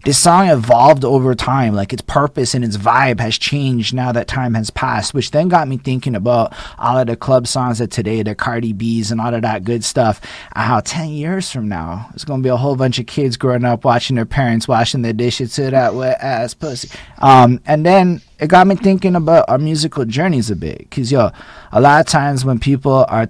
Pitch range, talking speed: 110-130 Hz, 225 wpm